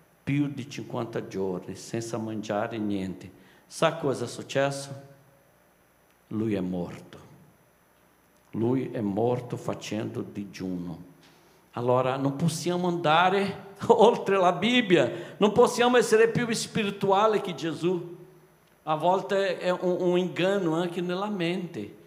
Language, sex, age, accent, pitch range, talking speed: Italian, male, 60-79, Brazilian, 125-180 Hz, 115 wpm